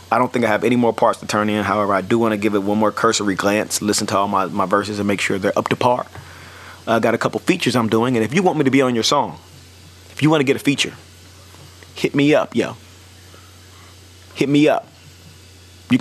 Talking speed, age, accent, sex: 245 wpm, 30-49, American, male